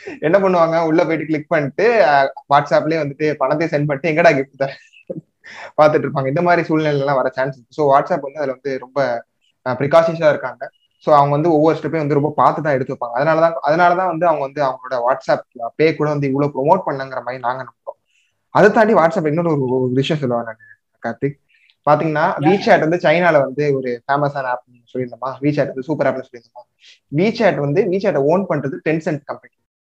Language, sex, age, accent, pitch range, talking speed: Tamil, male, 20-39, native, 135-175 Hz, 95 wpm